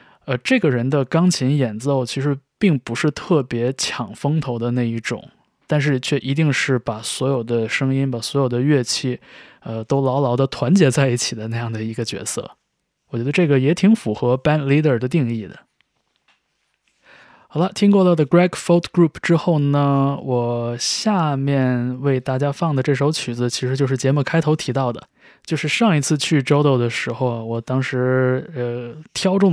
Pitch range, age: 120-150 Hz, 20-39